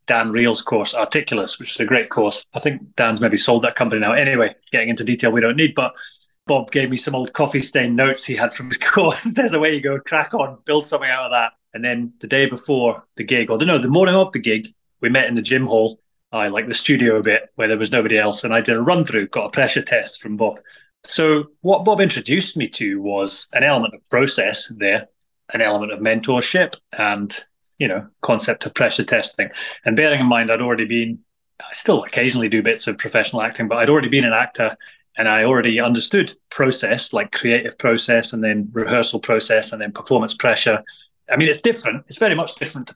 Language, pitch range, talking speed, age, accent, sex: English, 115-145 Hz, 225 wpm, 30-49, British, male